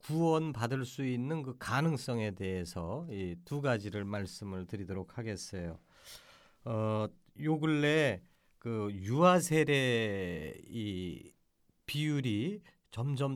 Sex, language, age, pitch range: male, Korean, 40-59, 105-145 Hz